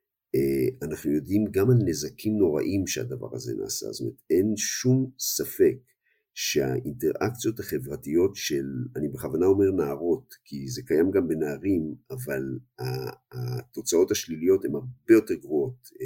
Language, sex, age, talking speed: Hebrew, male, 50-69, 125 wpm